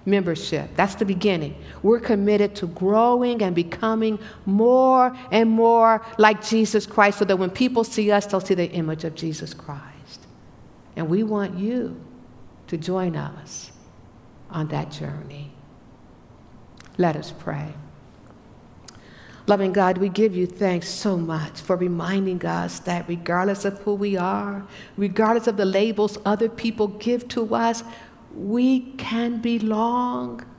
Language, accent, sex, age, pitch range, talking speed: English, American, female, 60-79, 180-230 Hz, 140 wpm